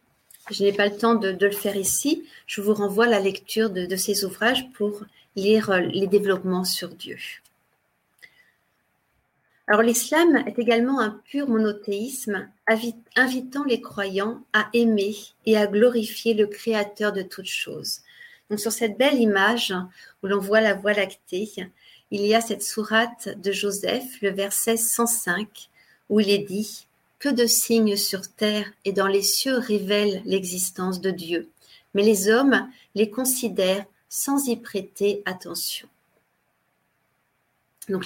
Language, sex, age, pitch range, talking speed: French, female, 40-59, 195-230 Hz, 150 wpm